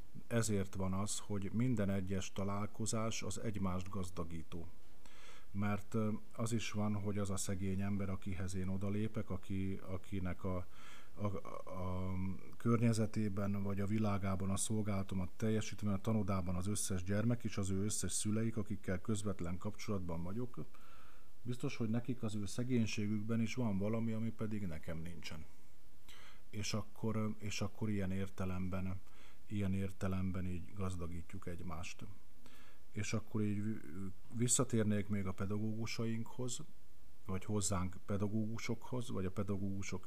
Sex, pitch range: male, 95-110 Hz